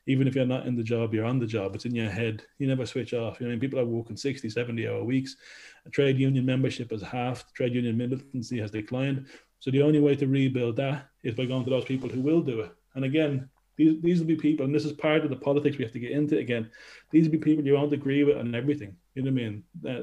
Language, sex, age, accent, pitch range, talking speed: English, male, 20-39, Irish, 115-135 Hz, 265 wpm